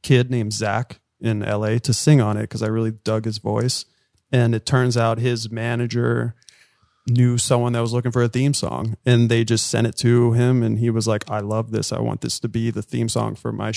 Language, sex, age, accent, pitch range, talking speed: English, male, 30-49, American, 110-125 Hz, 235 wpm